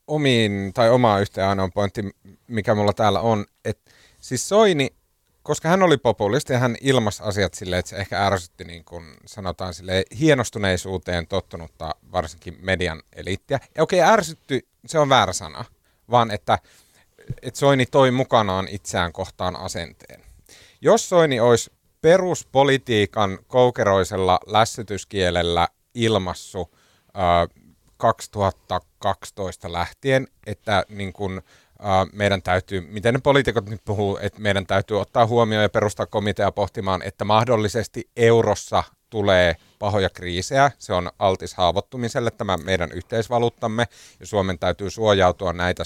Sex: male